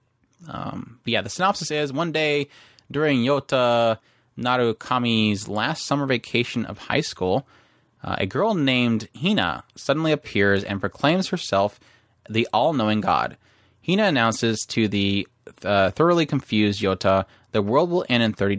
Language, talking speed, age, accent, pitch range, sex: English, 140 wpm, 20-39, American, 105-140 Hz, male